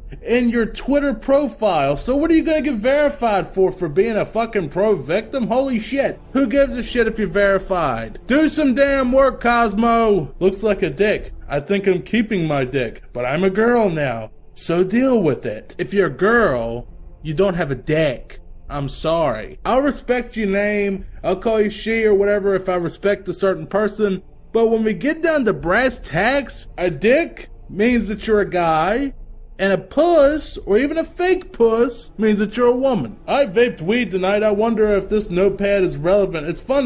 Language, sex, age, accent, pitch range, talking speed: English, male, 20-39, American, 180-235 Hz, 190 wpm